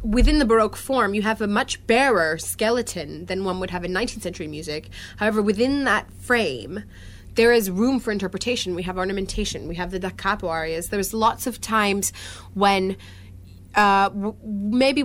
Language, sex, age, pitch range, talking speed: English, female, 30-49, 175-220 Hz, 170 wpm